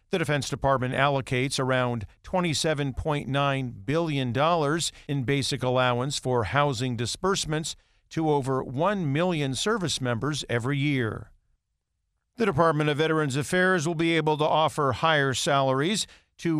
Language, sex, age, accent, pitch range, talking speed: English, male, 50-69, American, 130-160 Hz, 125 wpm